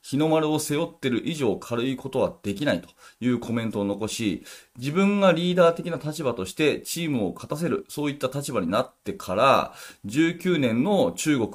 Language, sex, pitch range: Japanese, male, 105-150 Hz